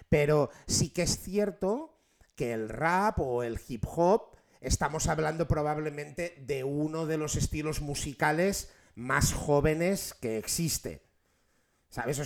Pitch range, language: 120-155 Hz, Spanish